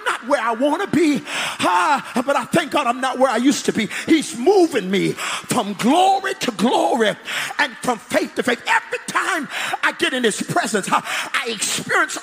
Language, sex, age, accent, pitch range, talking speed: English, male, 40-59, American, 205-325 Hz, 180 wpm